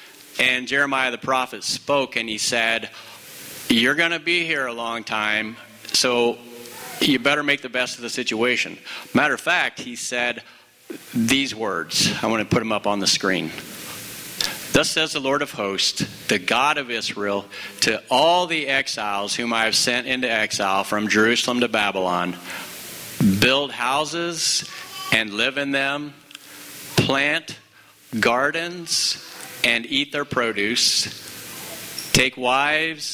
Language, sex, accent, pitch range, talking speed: English, male, American, 110-140 Hz, 145 wpm